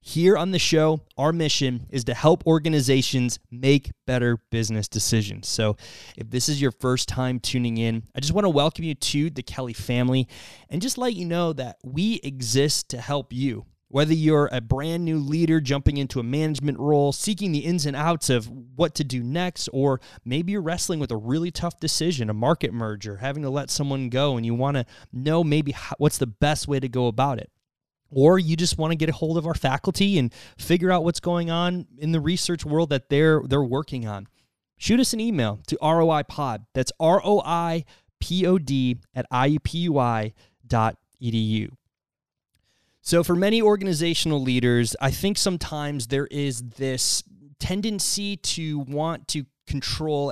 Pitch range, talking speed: 125-160 Hz, 180 wpm